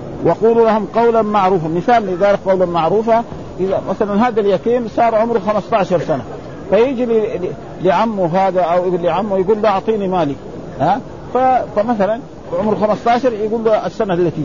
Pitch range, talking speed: 170-220 Hz, 140 wpm